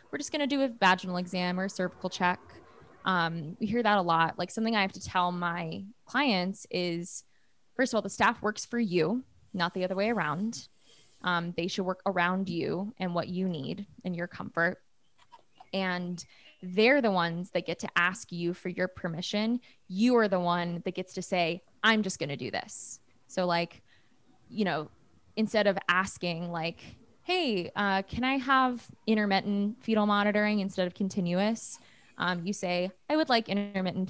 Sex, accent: female, American